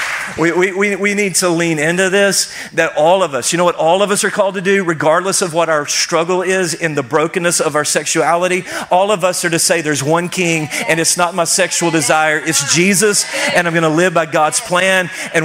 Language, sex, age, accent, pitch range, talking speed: English, male, 40-59, American, 150-185 Hz, 225 wpm